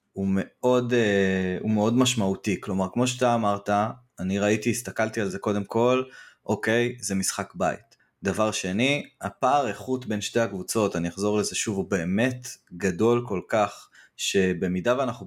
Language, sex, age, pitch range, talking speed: Hebrew, male, 20-39, 95-115 Hz, 150 wpm